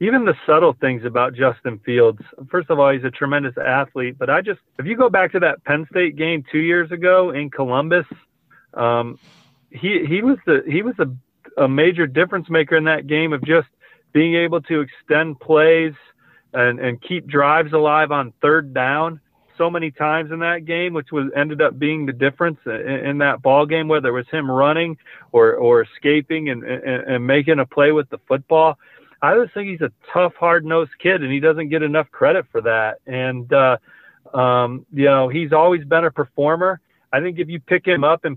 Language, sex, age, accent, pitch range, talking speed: English, male, 40-59, American, 140-175 Hz, 205 wpm